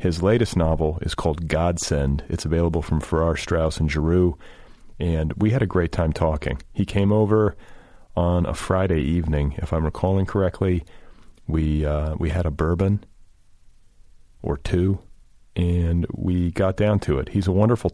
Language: English